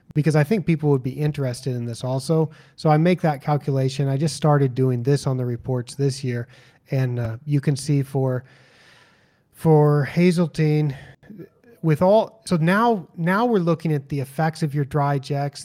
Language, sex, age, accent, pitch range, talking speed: English, male, 30-49, American, 130-155 Hz, 180 wpm